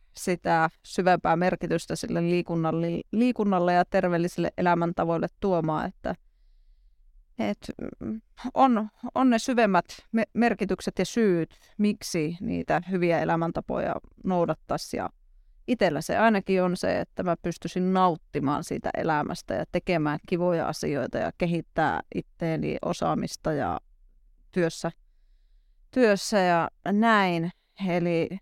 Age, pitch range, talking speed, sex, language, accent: 30-49, 165-205 Hz, 105 wpm, female, Finnish, native